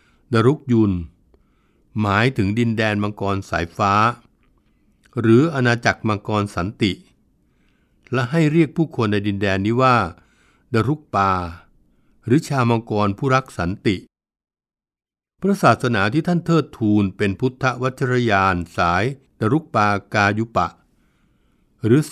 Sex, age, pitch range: male, 60-79, 95-125 Hz